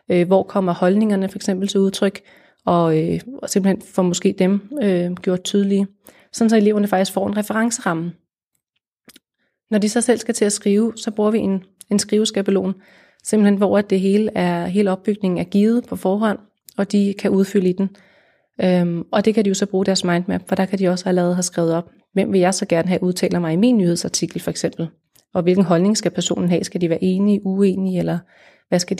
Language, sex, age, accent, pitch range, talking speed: Danish, female, 30-49, native, 180-205 Hz, 210 wpm